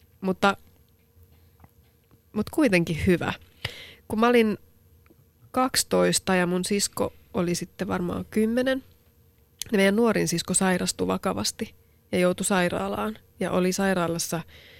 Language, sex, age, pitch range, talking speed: Finnish, female, 30-49, 165-195 Hz, 105 wpm